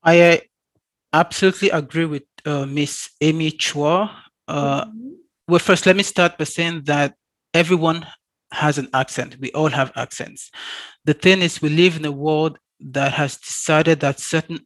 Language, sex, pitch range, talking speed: English, male, 140-165 Hz, 155 wpm